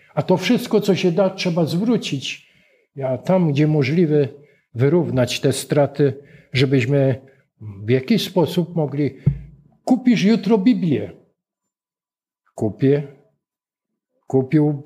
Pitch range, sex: 135-180 Hz, male